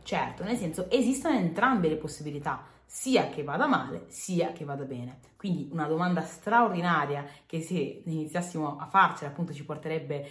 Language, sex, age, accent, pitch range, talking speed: Italian, female, 30-49, native, 155-230 Hz, 155 wpm